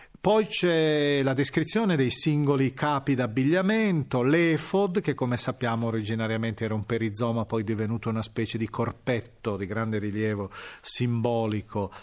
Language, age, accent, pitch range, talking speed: Italian, 40-59, native, 115-160 Hz, 135 wpm